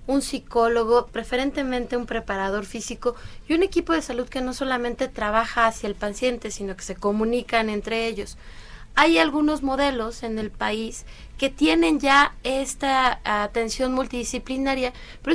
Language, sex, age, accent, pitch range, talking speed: Spanish, female, 20-39, Mexican, 225-275 Hz, 145 wpm